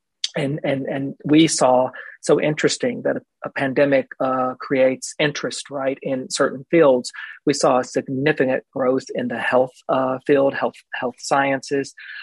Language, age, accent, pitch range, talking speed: English, 40-59, American, 125-145 Hz, 150 wpm